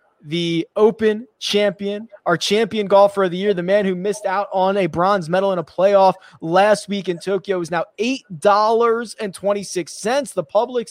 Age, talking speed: 20-39, 165 wpm